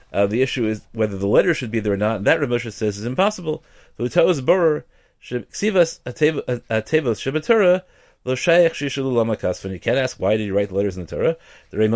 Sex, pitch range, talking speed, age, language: male, 105-150 Hz, 145 wpm, 30-49, English